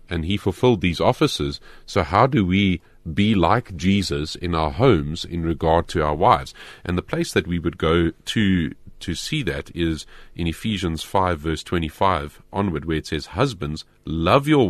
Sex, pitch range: male, 80-115 Hz